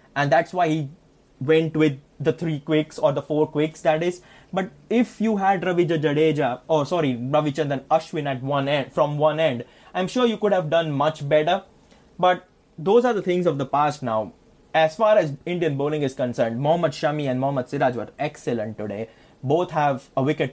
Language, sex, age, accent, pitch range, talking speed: English, male, 20-39, Indian, 130-160 Hz, 195 wpm